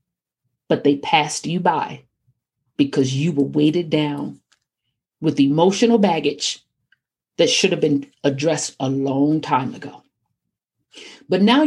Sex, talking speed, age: female, 125 wpm, 50-69